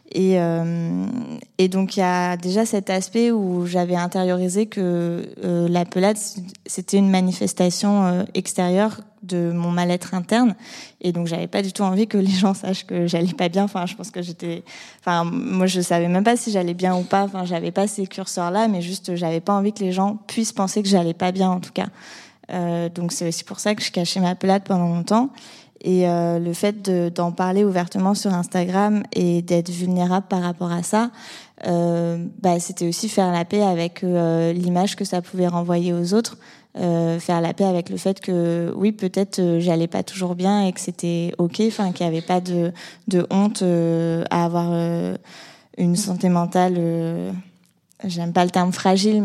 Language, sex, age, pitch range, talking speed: French, female, 20-39, 175-195 Hz, 200 wpm